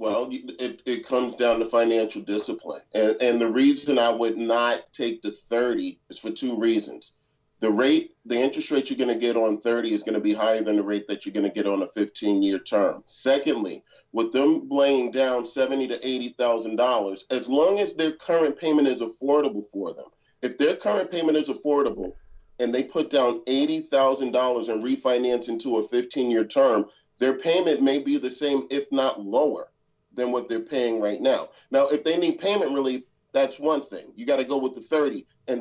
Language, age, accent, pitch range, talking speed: English, 40-59, American, 115-145 Hz, 195 wpm